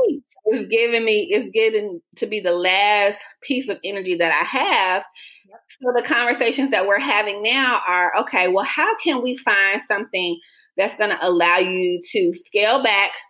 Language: English